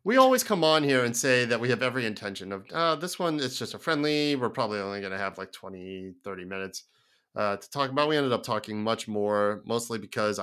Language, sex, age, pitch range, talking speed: English, male, 30-49, 105-130 Hz, 240 wpm